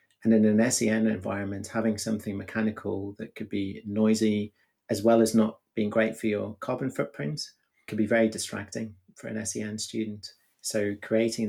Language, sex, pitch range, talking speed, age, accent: English, male, 100-110 Hz, 165 wpm, 30-49, British